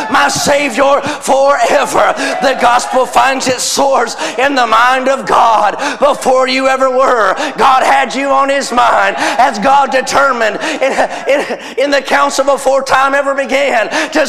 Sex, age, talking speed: male, 40-59, 145 wpm